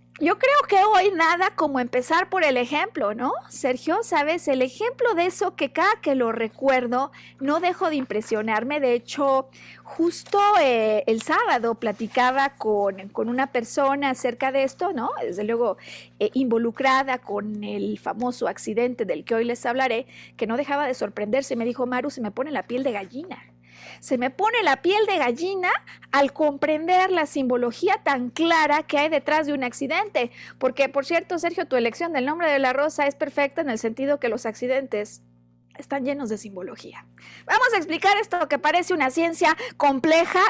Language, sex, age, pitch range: Spanish, female, 40-59, 240-320 Hz